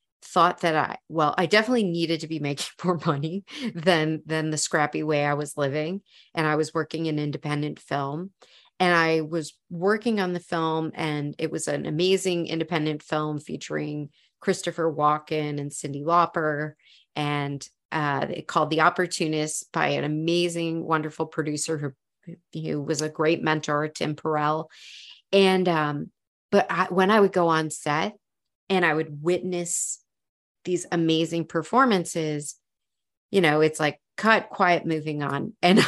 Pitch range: 150-180 Hz